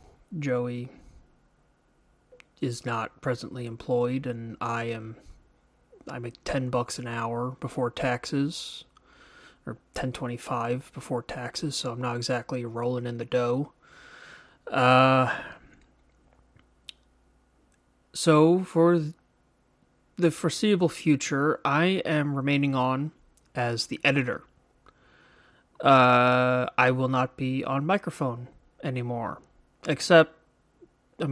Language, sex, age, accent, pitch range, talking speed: English, male, 30-49, American, 115-140 Hz, 100 wpm